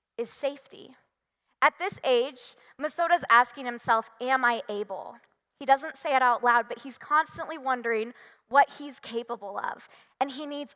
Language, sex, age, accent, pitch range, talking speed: English, female, 10-29, American, 235-295 Hz, 155 wpm